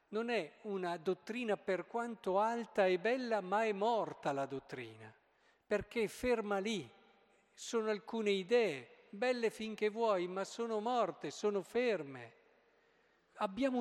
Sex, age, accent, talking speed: male, 50-69, native, 130 wpm